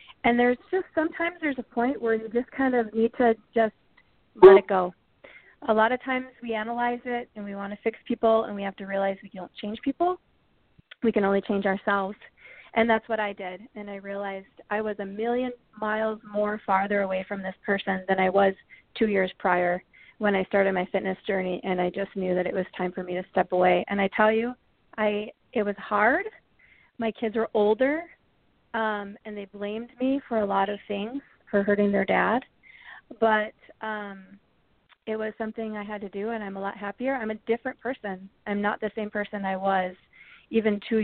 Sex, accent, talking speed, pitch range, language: female, American, 210 wpm, 195-225 Hz, English